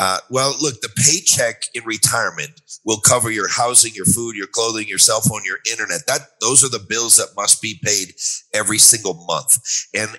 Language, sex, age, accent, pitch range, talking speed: English, male, 50-69, American, 105-130 Hz, 195 wpm